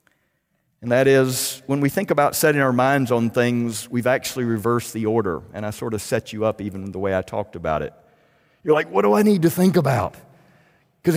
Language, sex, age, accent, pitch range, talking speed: English, male, 50-69, American, 105-155 Hz, 220 wpm